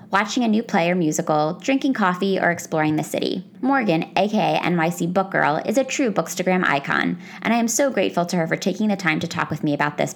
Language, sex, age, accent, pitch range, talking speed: English, female, 20-39, American, 165-215 Hz, 230 wpm